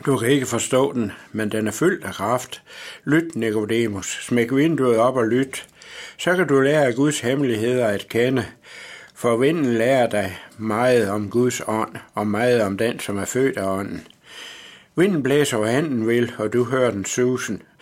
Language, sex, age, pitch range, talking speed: Danish, male, 60-79, 110-130 Hz, 180 wpm